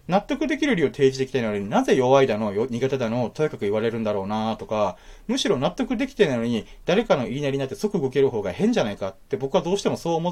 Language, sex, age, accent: Japanese, male, 30-49, native